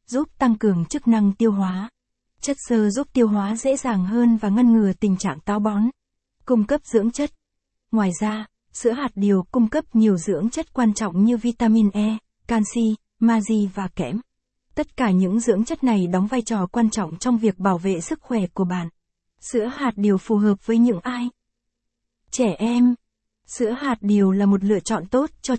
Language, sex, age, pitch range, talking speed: Vietnamese, female, 20-39, 200-240 Hz, 195 wpm